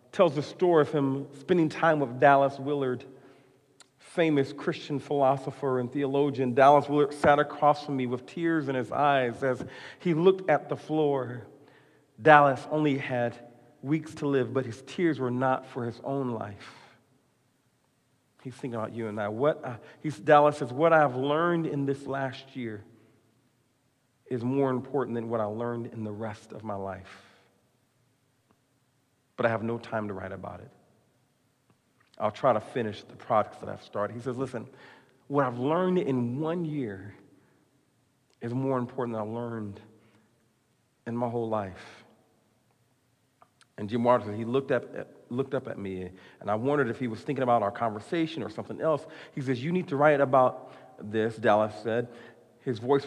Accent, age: American, 40-59